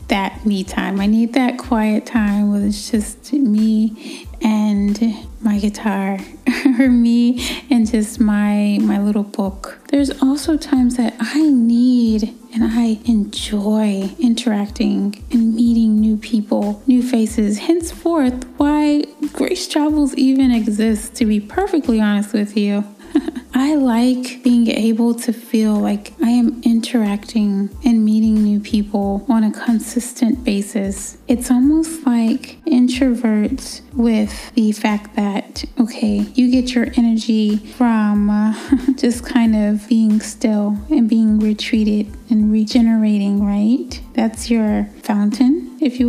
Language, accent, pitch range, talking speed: English, American, 215-255 Hz, 130 wpm